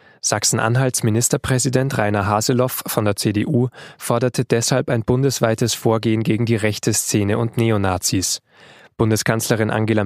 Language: German